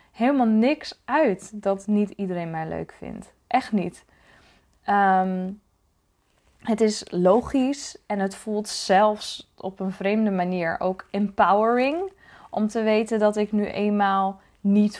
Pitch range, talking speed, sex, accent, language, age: 180-235 Hz, 130 wpm, female, Dutch, Dutch, 20-39